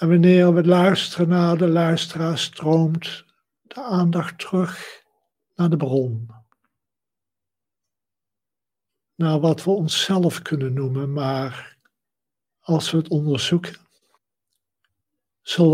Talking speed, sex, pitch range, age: 100 wpm, male, 135-175 Hz, 60-79